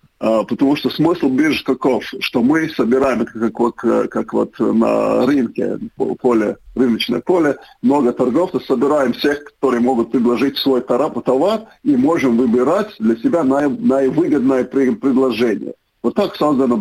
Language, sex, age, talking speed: Russian, male, 50-69, 140 wpm